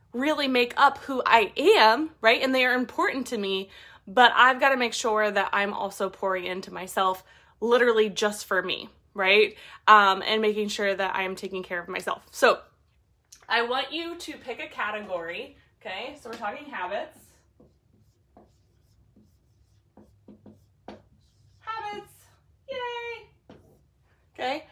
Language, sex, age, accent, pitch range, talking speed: English, female, 20-39, American, 210-265 Hz, 140 wpm